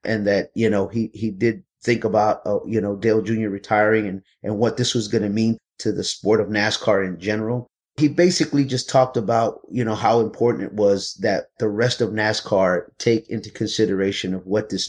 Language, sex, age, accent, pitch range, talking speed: English, male, 30-49, American, 105-125 Hz, 210 wpm